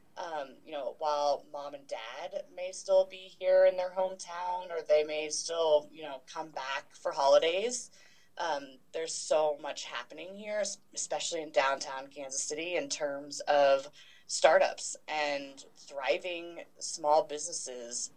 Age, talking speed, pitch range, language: 20-39, 140 wpm, 145-195 Hz, English